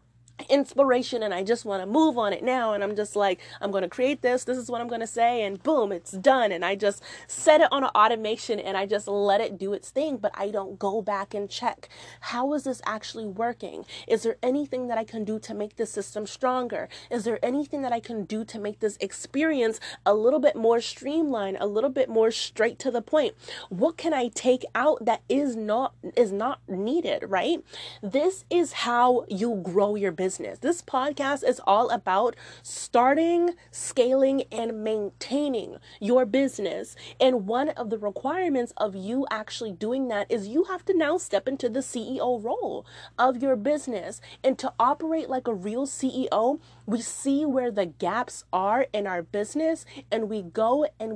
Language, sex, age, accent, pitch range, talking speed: English, female, 30-49, American, 210-270 Hz, 195 wpm